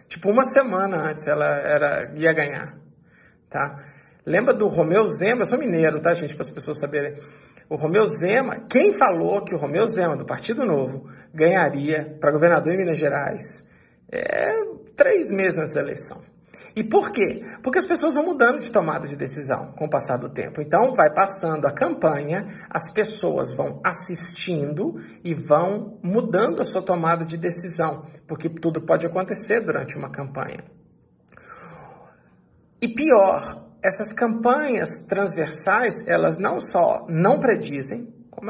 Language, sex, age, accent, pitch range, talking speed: Portuguese, male, 50-69, Brazilian, 165-235 Hz, 155 wpm